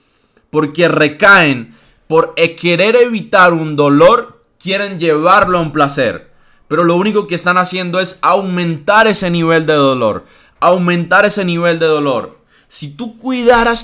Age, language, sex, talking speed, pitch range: 20-39, Spanish, male, 140 wpm, 155-195 Hz